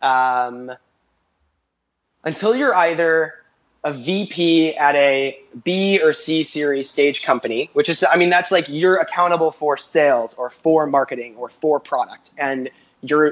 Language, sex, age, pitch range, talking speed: English, male, 20-39, 135-170 Hz, 145 wpm